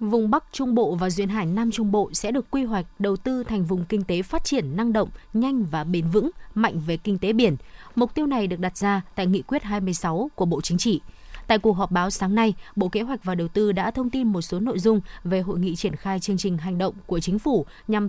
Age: 20-39